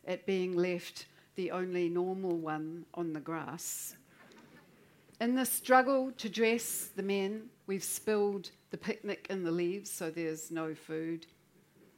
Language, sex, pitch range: English, female, 170-195 Hz